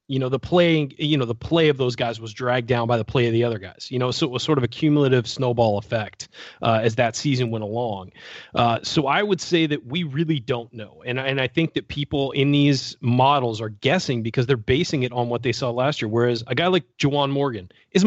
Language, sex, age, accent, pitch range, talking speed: English, male, 30-49, American, 115-150 Hz, 250 wpm